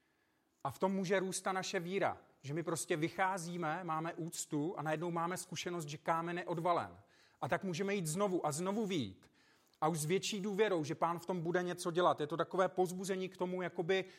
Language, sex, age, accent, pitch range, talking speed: Czech, male, 40-59, native, 155-190 Hz, 205 wpm